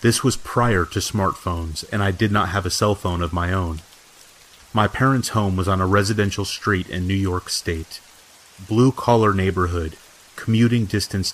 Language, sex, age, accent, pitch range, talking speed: English, male, 30-49, American, 90-110 Hz, 170 wpm